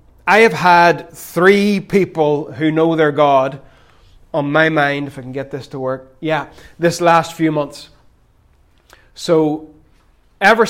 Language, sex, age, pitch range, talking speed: English, male, 30-49, 145-170 Hz, 145 wpm